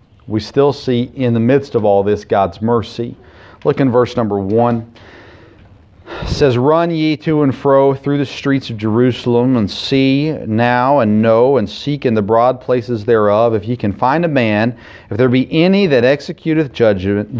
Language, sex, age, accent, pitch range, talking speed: English, male, 40-59, American, 105-130 Hz, 185 wpm